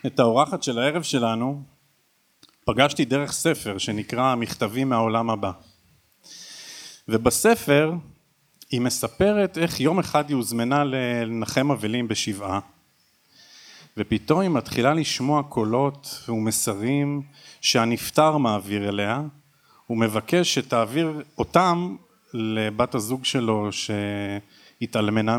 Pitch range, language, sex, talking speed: 110-145 Hz, Hebrew, male, 90 wpm